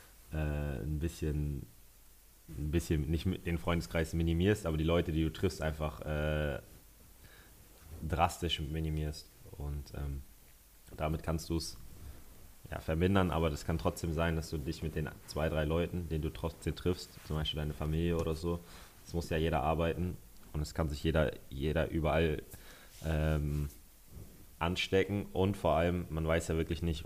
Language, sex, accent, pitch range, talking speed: German, male, German, 75-85 Hz, 155 wpm